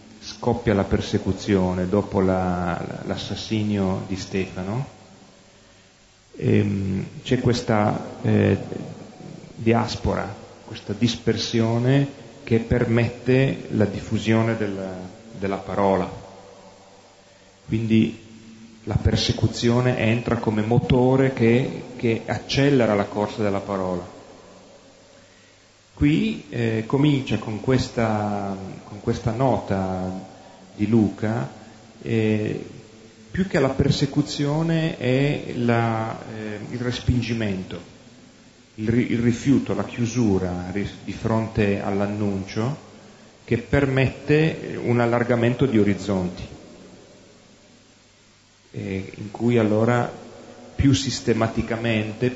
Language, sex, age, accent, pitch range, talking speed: Italian, male, 40-59, native, 100-120 Hz, 80 wpm